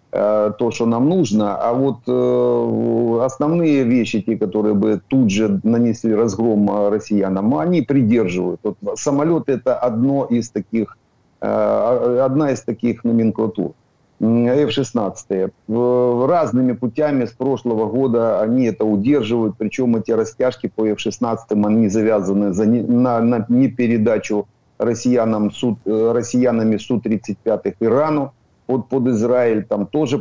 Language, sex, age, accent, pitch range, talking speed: Ukrainian, male, 50-69, native, 105-130 Hz, 120 wpm